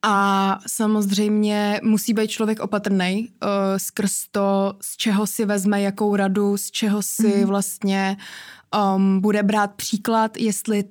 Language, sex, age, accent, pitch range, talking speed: Czech, female, 20-39, native, 200-215 Hz, 130 wpm